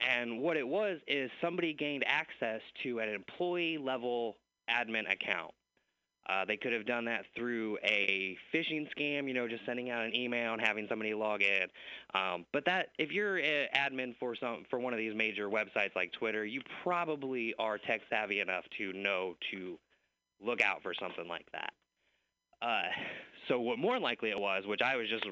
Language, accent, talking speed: English, American, 180 wpm